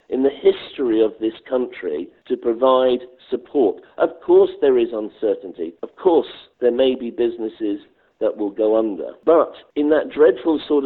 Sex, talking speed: male, 160 wpm